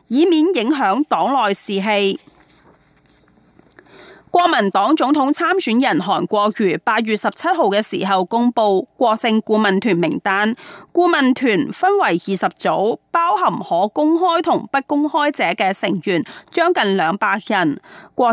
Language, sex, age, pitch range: Chinese, female, 30-49, 200-295 Hz